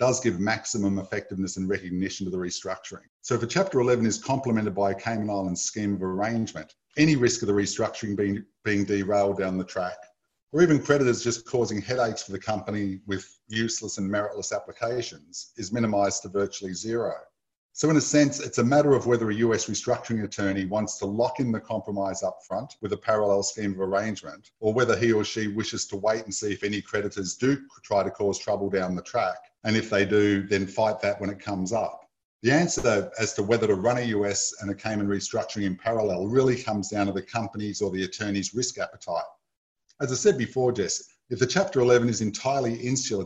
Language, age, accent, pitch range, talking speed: English, 50-69, Australian, 100-115 Hz, 210 wpm